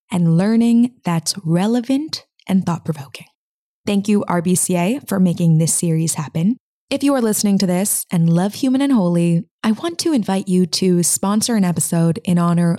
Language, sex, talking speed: English, female, 175 wpm